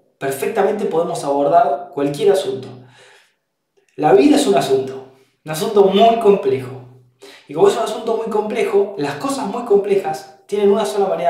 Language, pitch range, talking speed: Spanish, 135-210 Hz, 155 wpm